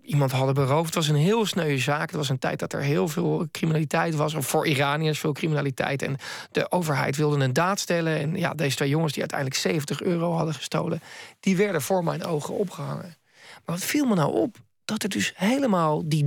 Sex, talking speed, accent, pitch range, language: male, 220 wpm, Dutch, 150-185 Hz, Dutch